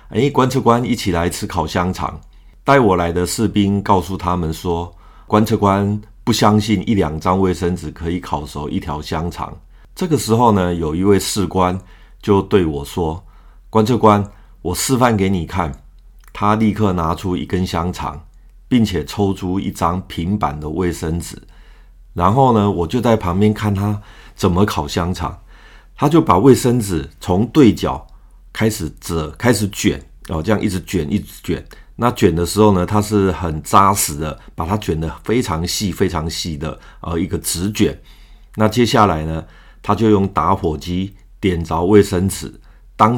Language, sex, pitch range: Chinese, male, 85-105 Hz